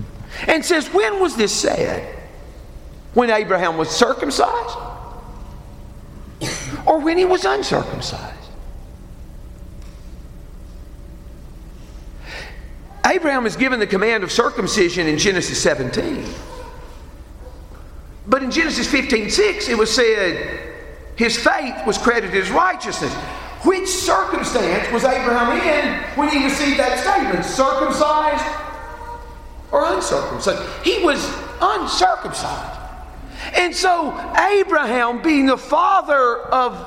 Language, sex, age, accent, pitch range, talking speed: English, male, 50-69, American, 220-335 Hz, 100 wpm